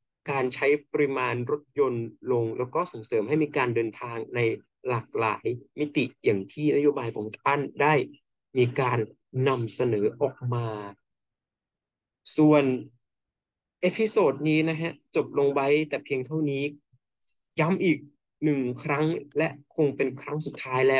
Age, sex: 20-39, male